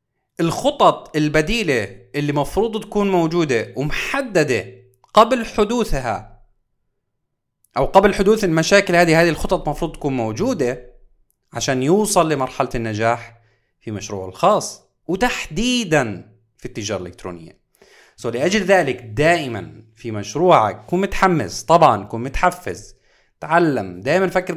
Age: 30-49